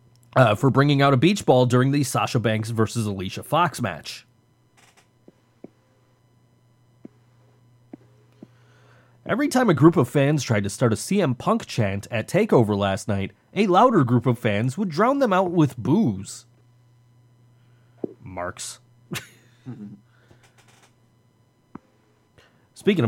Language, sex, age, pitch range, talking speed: English, male, 30-49, 120-180 Hz, 115 wpm